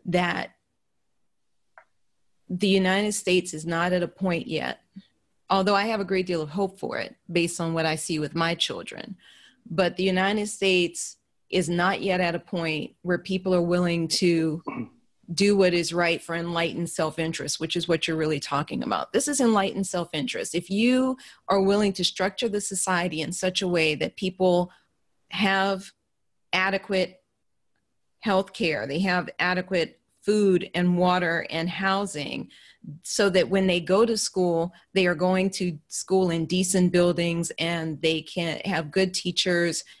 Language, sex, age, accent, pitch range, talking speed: English, female, 30-49, American, 170-190 Hz, 160 wpm